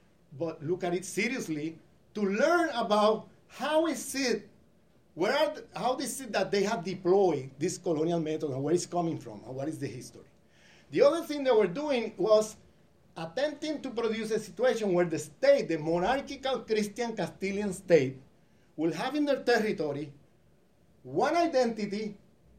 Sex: male